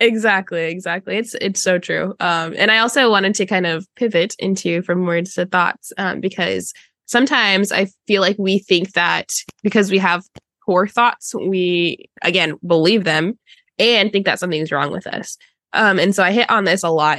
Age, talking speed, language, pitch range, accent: 10-29, 190 wpm, English, 175-220 Hz, American